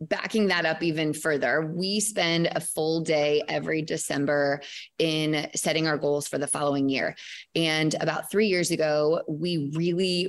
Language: English